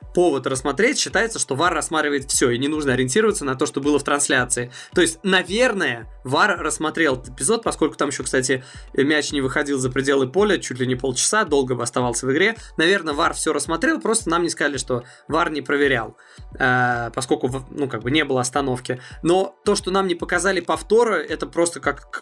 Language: Russian